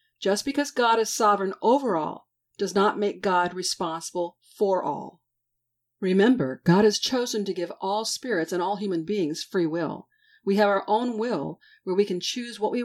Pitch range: 175-230 Hz